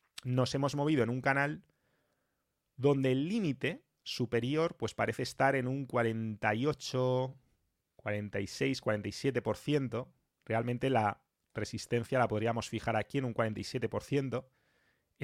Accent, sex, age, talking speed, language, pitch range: Spanish, male, 30-49, 110 wpm, English, 110-130 Hz